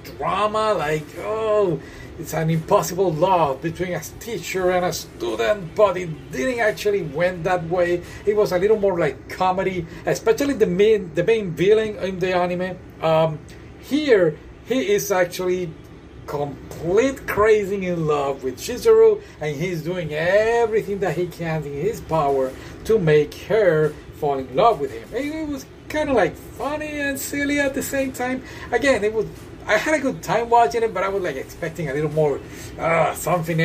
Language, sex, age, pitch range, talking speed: English, male, 40-59, 160-220 Hz, 175 wpm